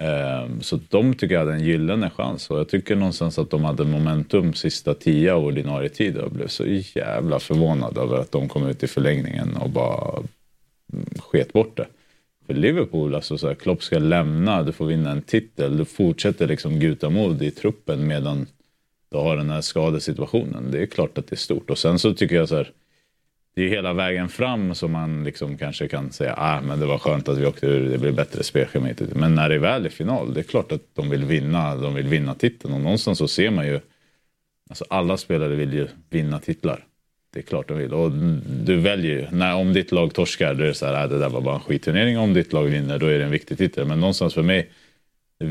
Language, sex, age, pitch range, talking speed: Swedish, male, 30-49, 70-85 Hz, 230 wpm